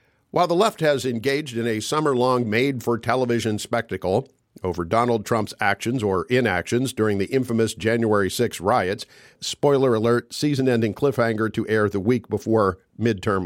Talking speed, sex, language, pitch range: 140 wpm, male, English, 110-135 Hz